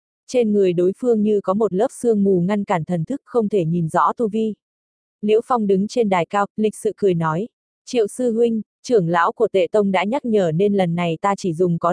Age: 20-39